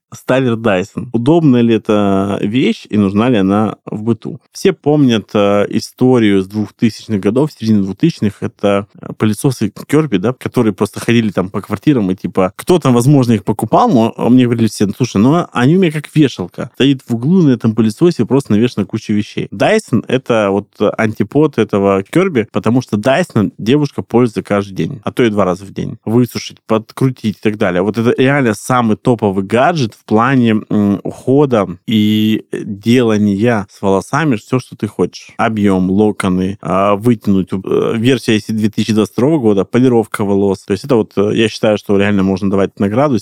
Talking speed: 170 wpm